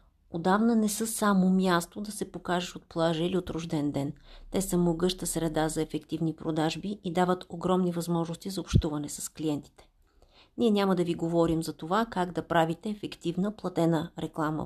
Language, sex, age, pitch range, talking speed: Bulgarian, female, 40-59, 160-195 Hz, 170 wpm